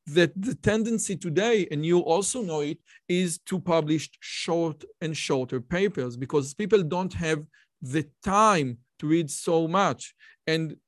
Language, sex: English, male